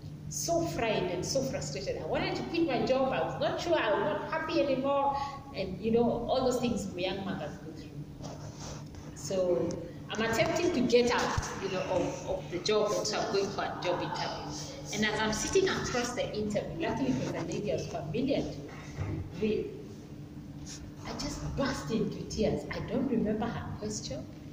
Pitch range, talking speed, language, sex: 180-260 Hz, 185 wpm, English, female